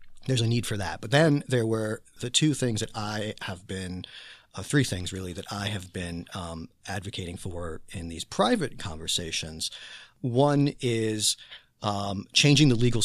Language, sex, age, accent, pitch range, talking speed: English, male, 40-59, American, 95-125 Hz, 170 wpm